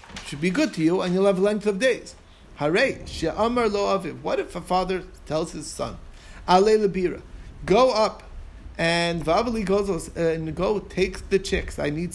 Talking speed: 165 wpm